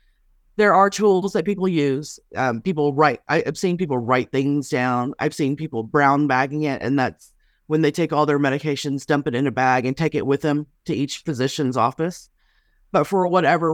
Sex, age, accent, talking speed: female, 30-49, American, 205 wpm